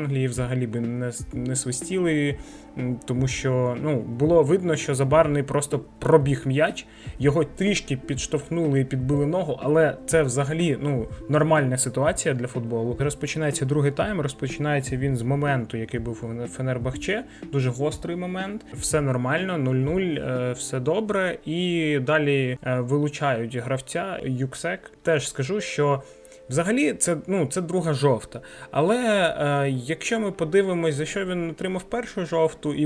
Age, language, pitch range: 20-39, Ukrainian, 125-155 Hz